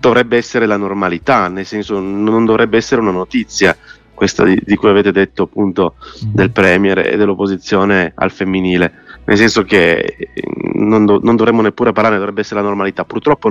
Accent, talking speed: native, 170 wpm